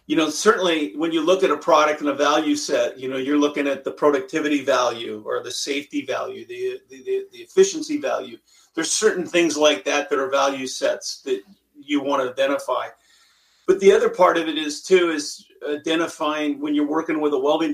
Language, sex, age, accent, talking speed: English, male, 40-59, American, 205 wpm